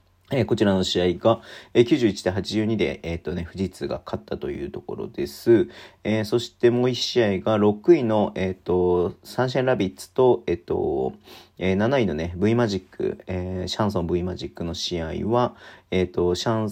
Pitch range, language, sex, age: 90-110 Hz, Japanese, male, 40-59